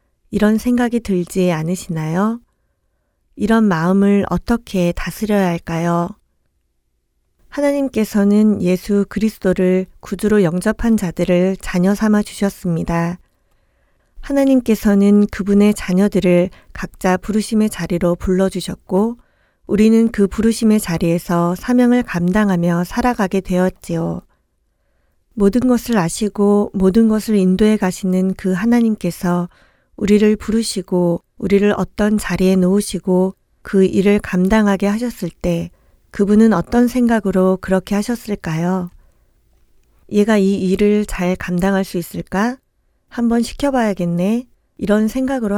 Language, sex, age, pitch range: Korean, female, 40-59, 180-215 Hz